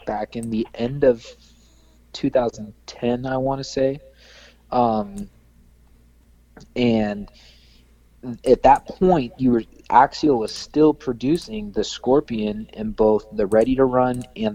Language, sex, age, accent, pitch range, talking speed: English, male, 20-39, American, 100-120 Hz, 130 wpm